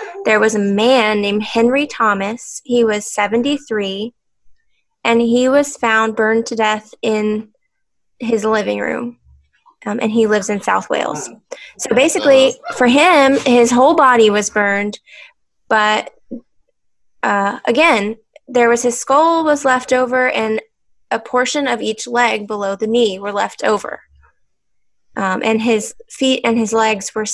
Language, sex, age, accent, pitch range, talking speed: English, female, 10-29, American, 210-255 Hz, 145 wpm